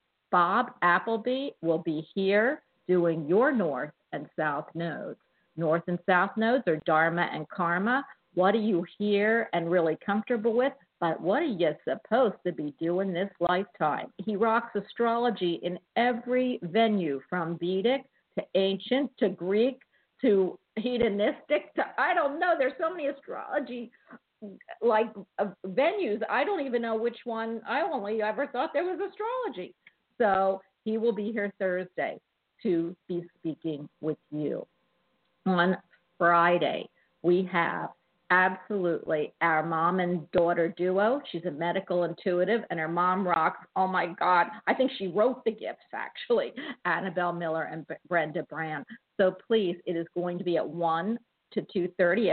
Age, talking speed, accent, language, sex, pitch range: 50-69, 145 wpm, American, English, female, 175-230 Hz